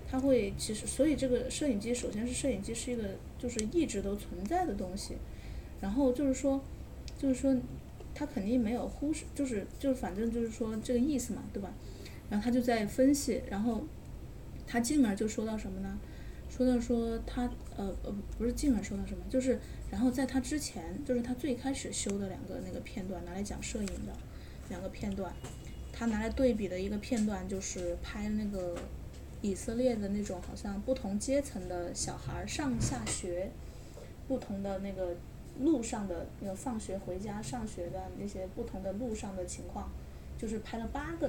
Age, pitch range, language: 10-29, 200-255 Hz, Chinese